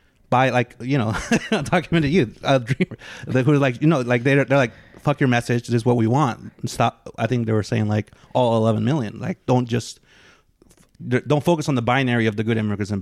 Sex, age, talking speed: male, 30-49, 235 wpm